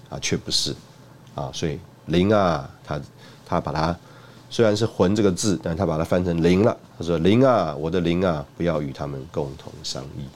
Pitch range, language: 85-125 Hz, Chinese